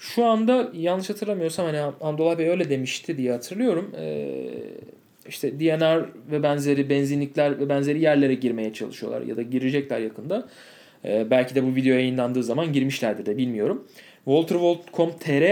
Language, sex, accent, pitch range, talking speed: Turkish, male, native, 135-190 Hz, 145 wpm